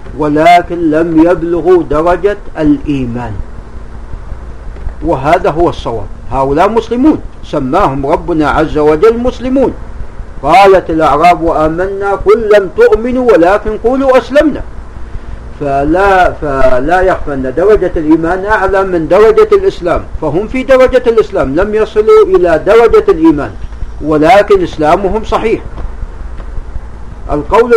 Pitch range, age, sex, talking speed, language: 145-215 Hz, 50-69, male, 100 wpm, Arabic